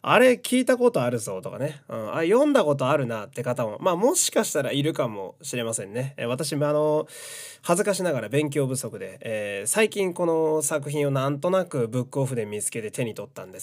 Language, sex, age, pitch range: Japanese, male, 20-39, 120-190 Hz